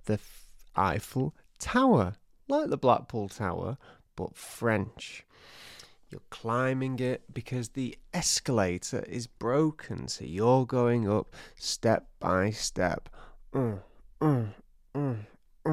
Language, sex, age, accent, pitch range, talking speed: English, male, 30-49, British, 105-145 Hz, 95 wpm